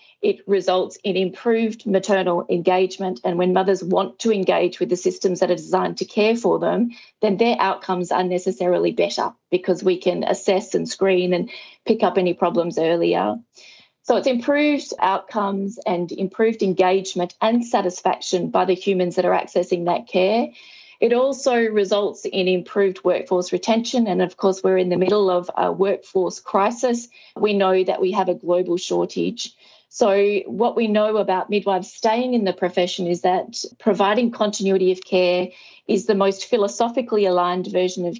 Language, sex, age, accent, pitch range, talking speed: English, female, 40-59, Australian, 180-215 Hz, 165 wpm